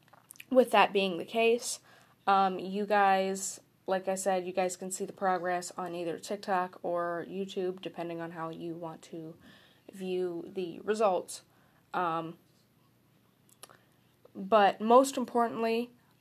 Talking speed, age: 130 wpm, 10-29